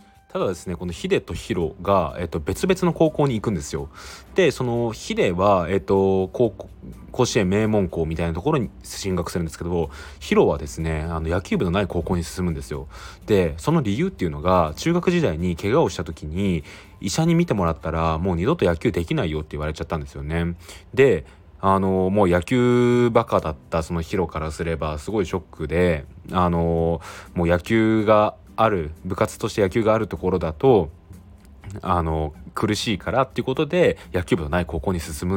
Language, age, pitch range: Japanese, 20-39, 85-110 Hz